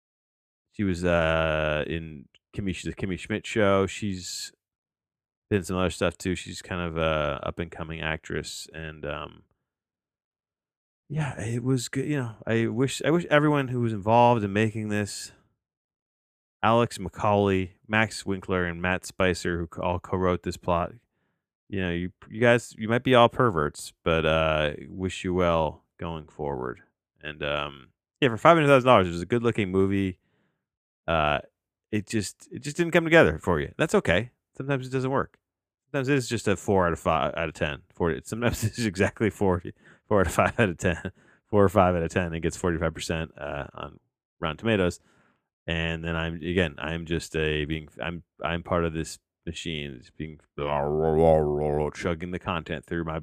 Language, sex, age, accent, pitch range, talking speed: English, male, 30-49, American, 80-110 Hz, 190 wpm